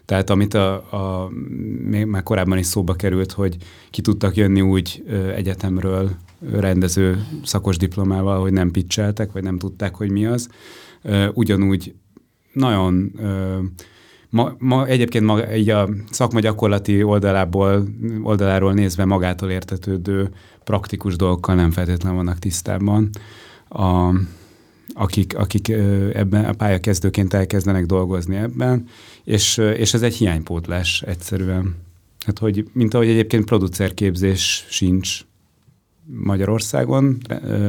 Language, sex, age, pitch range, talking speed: Hungarian, male, 30-49, 95-110 Hz, 115 wpm